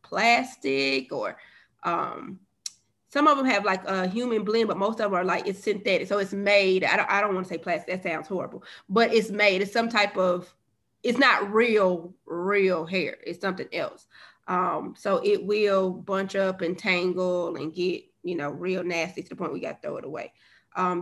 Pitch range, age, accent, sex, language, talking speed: 170-200 Hz, 20-39, American, female, English, 205 wpm